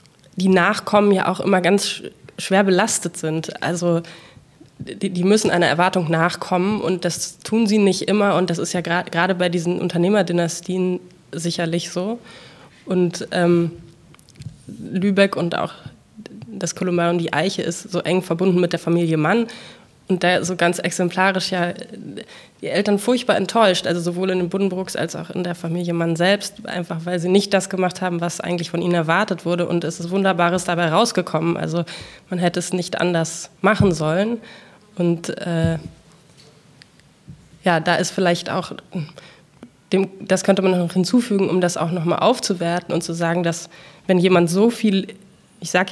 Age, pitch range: 20-39, 170-195 Hz